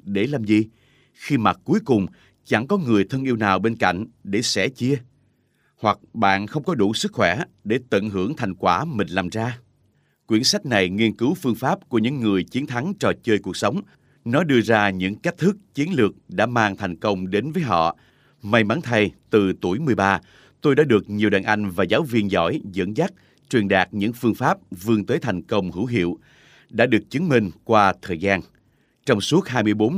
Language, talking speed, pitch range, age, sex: Vietnamese, 205 wpm, 100-125 Hz, 30-49, male